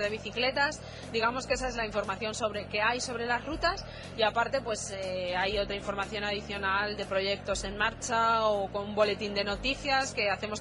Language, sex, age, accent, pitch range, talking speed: Spanish, female, 20-39, Spanish, 210-240 Hz, 185 wpm